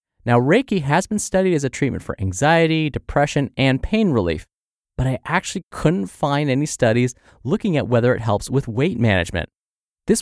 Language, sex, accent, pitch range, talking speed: English, male, American, 110-160 Hz, 175 wpm